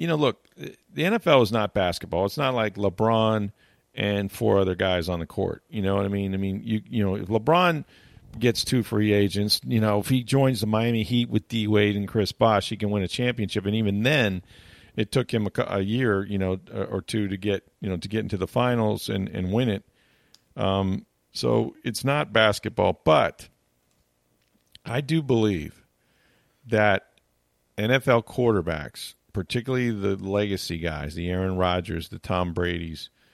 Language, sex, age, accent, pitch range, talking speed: English, male, 50-69, American, 90-115 Hz, 180 wpm